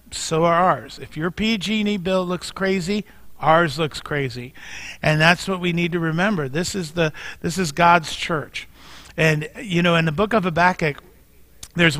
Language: English